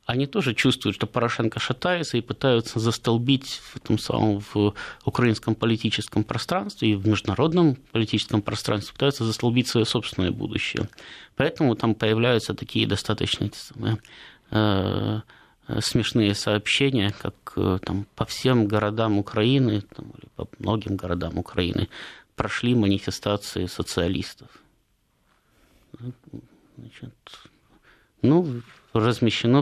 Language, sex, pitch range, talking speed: Russian, male, 105-125 Hz, 100 wpm